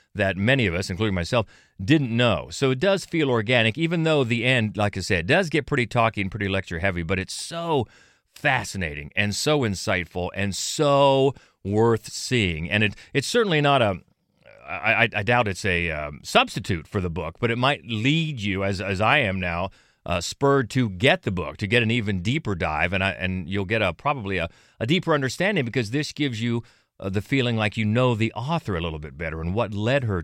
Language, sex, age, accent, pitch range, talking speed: English, male, 40-59, American, 95-140 Hz, 210 wpm